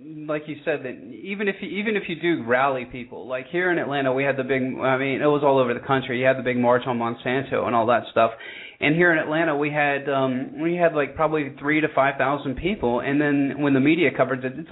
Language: English